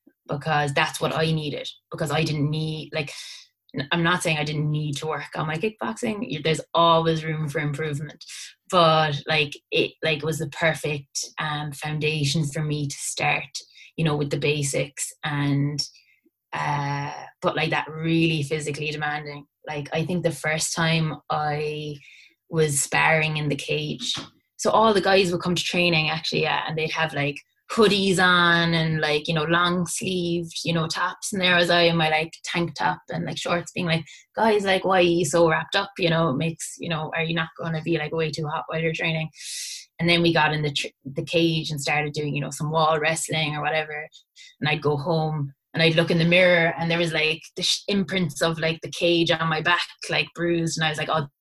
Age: 20-39